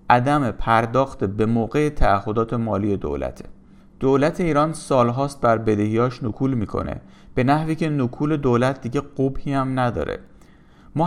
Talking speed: 130 wpm